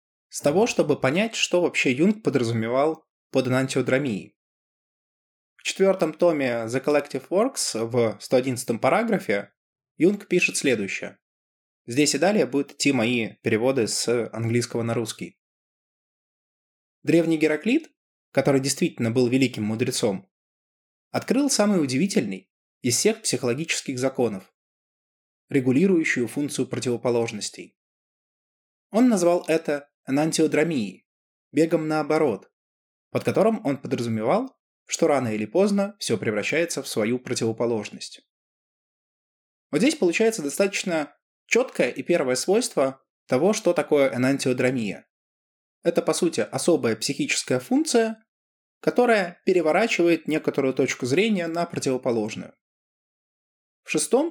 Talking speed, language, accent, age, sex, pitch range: 105 wpm, Russian, native, 20-39, male, 120-175 Hz